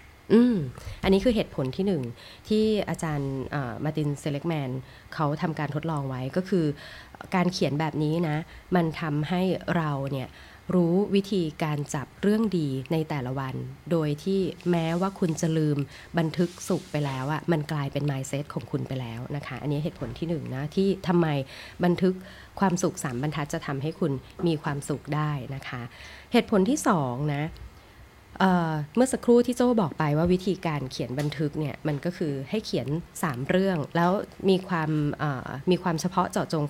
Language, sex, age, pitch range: Thai, female, 20-39, 140-185 Hz